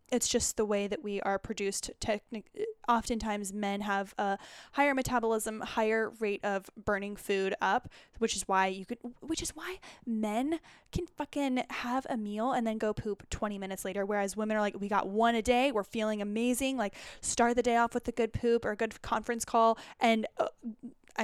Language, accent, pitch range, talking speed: English, American, 205-240 Hz, 200 wpm